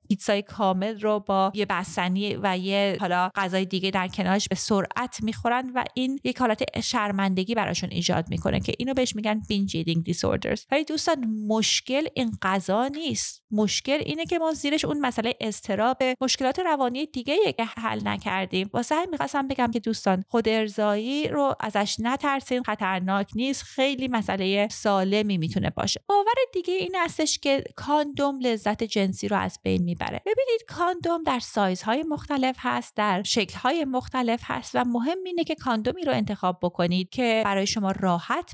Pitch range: 195-270 Hz